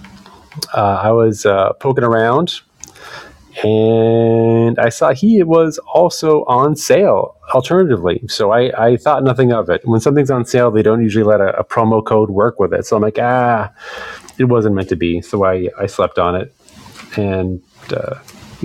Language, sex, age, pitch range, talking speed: English, male, 30-49, 105-130 Hz, 175 wpm